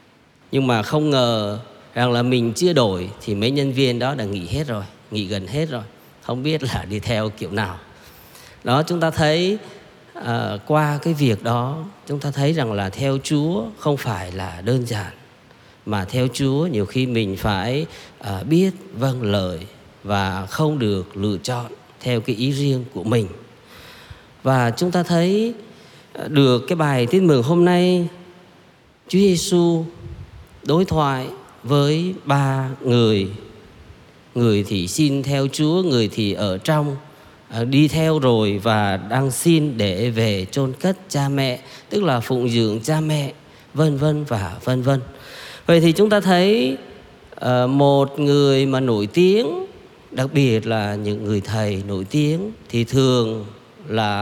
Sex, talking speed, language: male, 160 wpm, Vietnamese